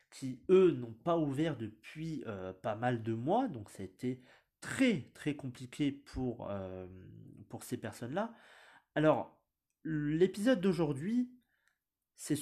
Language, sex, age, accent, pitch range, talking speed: French, male, 30-49, French, 115-155 Hz, 130 wpm